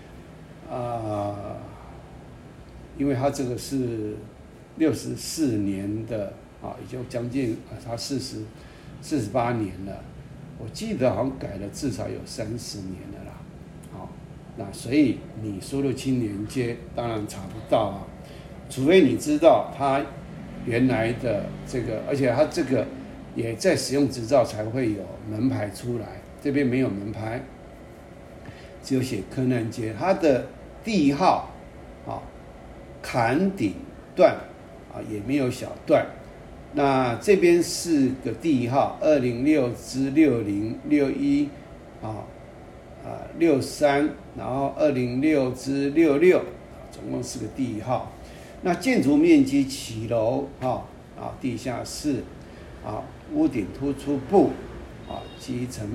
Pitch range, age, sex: 110-150 Hz, 60-79, male